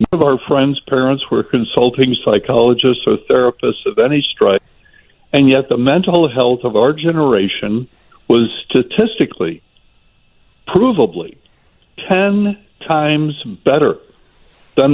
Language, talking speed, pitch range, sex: English, 115 wpm, 115-155 Hz, male